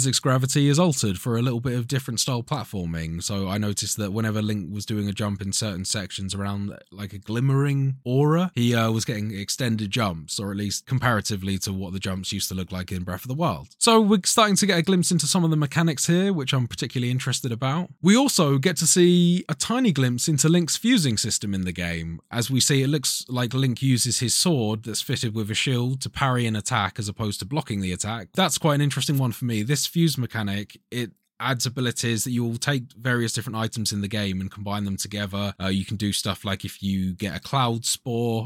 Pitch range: 100-135 Hz